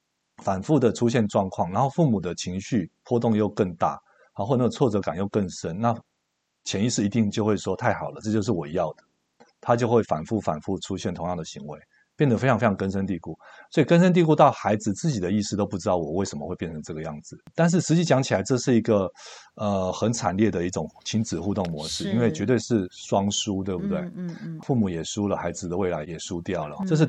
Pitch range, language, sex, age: 100-145 Hz, Chinese, male, 50-69